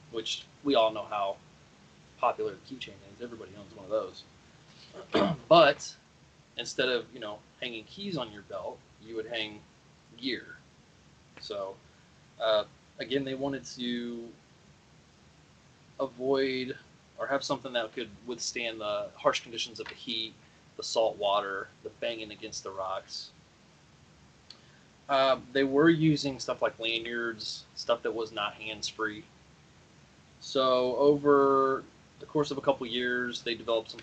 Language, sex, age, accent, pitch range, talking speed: English, male, 20-39, American, 110-135 Hz, 140 wpm